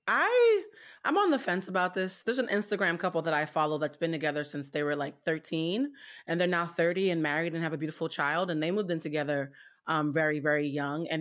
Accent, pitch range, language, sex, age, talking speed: American, 160-215 Hz, English, female, 30-49, 230 wpm